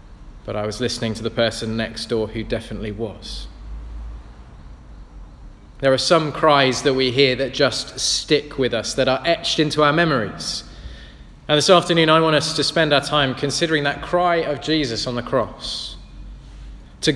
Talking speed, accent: 170 wpm, British